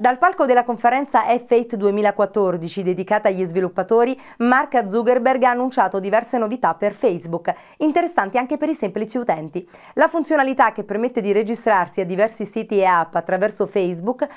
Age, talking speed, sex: 30-49, 150 wpm, female